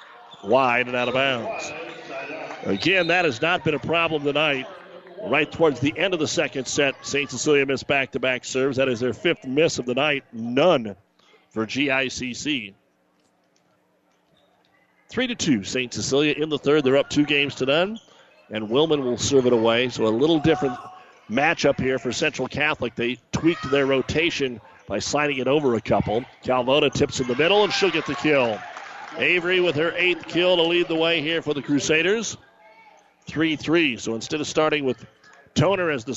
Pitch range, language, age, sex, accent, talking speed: 125-155 Hz, English, 40-59, male, American, 180 wpm